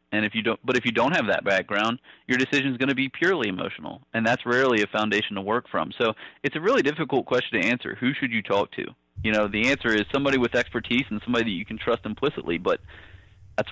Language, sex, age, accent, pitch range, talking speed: English, male, 30-49, American, 100-125 Hz, 250 wpm